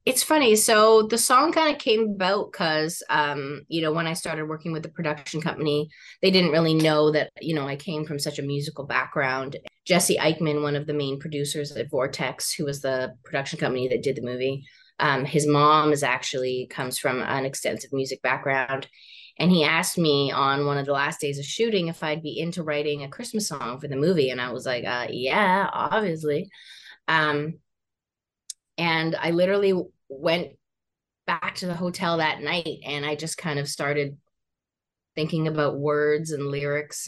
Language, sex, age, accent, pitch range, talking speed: English, female, 20-39, American, 140-170 Hz, 190 wpm